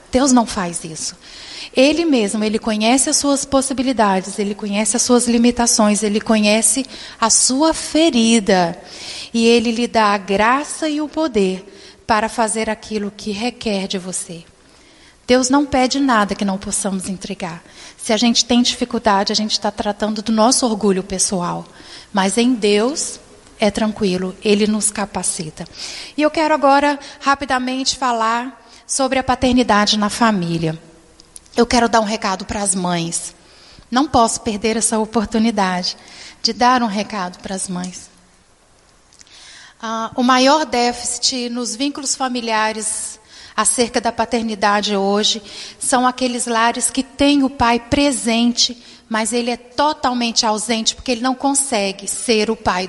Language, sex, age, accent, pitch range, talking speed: Portuguese, female, 30-49, Brazilian, 210-255 Hz, 145 wpm